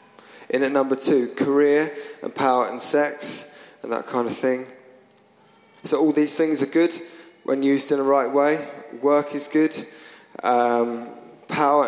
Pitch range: 120-145 Hz